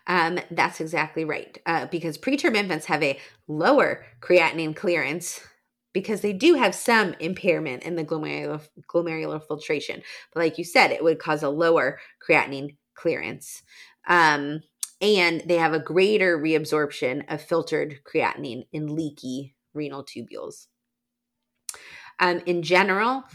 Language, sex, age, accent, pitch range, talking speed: English, female, 30-49, American, 150-180 Hz, 135 wpm